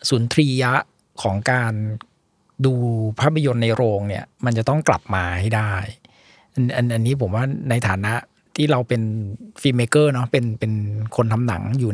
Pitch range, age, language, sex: 115-150 Hz, 60-79, Thai, male